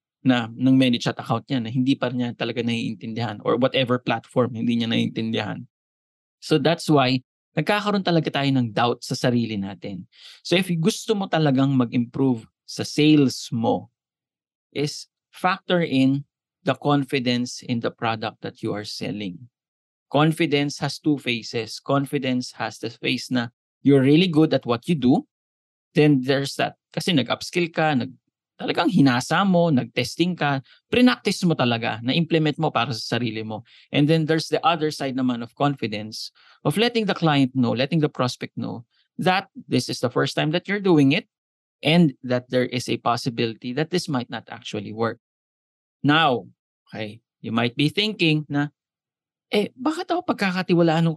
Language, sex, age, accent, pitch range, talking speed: English, male, 20-39, Filipino, 120-160 Hz, 160 wpm